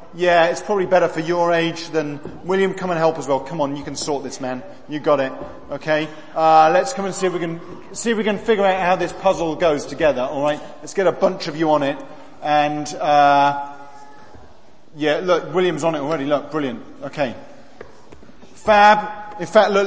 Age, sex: 40-59, male